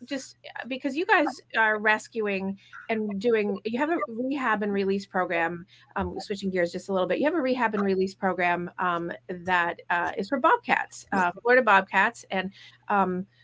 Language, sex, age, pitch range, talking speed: English, female, 30-49, 175-220 Hz, 180 wpm